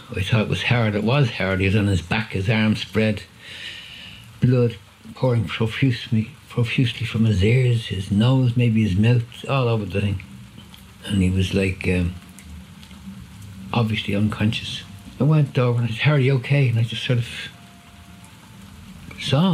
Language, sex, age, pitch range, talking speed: English, male, 60-79, 95-110 Hz, 165 wpm